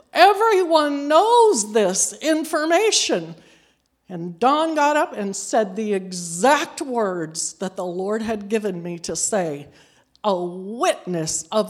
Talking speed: 125 wpm